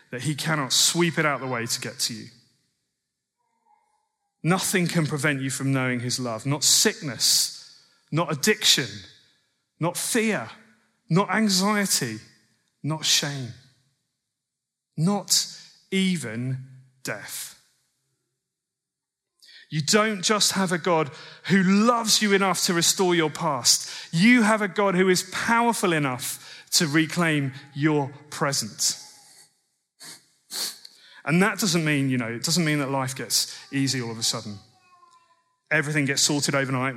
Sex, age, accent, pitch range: male, 30-49, British, 130-175 Hz